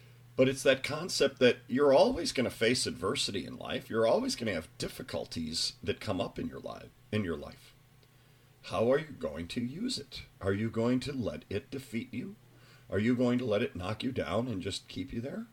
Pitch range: 95-130 Hz